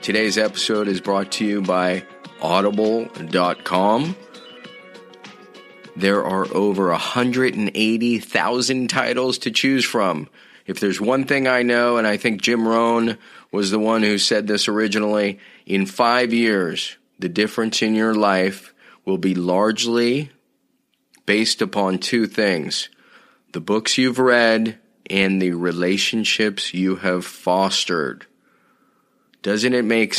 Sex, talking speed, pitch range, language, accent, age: male, 125 wpm, 100-120 Hz, English, American, 30-49